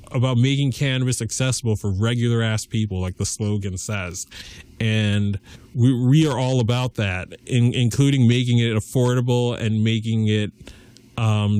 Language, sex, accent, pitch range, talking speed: English, male, American, 110-130 Hz, 145 wpm